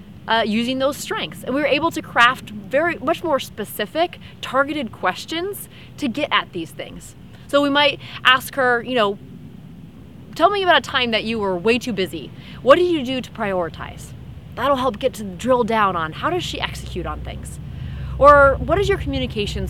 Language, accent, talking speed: English, American, 190 wpm